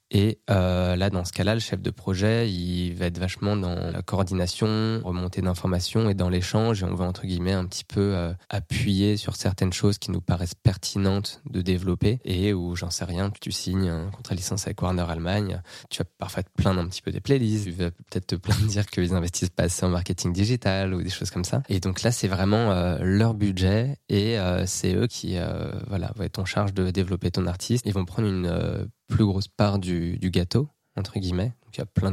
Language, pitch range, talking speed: French, 90-105 Hz, 230 wpm